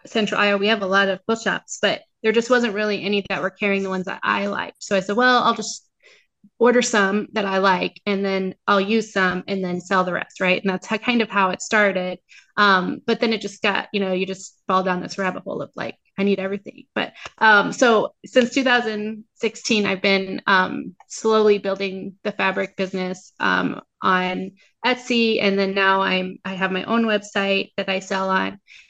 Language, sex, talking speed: English, female, 210 wpm